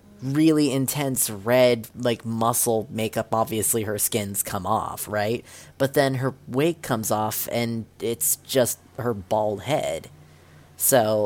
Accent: American